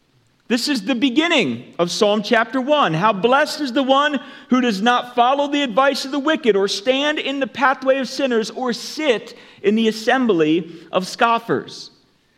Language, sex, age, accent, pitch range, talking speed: English, male, 40-59, American, 160-260 Hz, 175 wpm